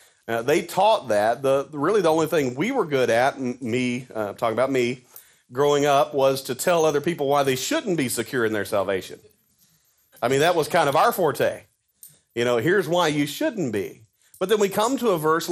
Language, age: English, 40-59